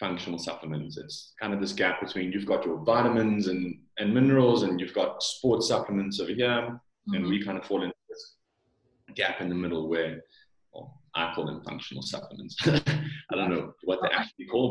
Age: 30-49